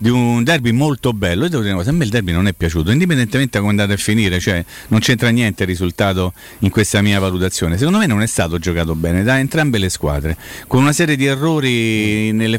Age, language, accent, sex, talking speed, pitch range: 40-59, Italian, native, male, 240 wpm, 100-135 Hz